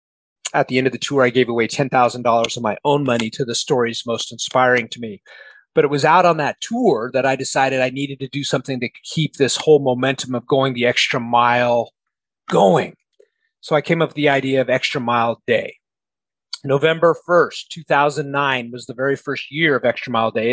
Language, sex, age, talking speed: English, male, 30-49, 205 wpm